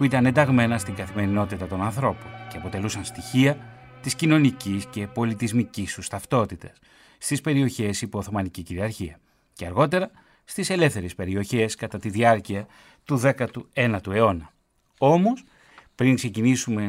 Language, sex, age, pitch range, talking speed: Greek, male, 30-49, 105-135 Hz, 125 wpm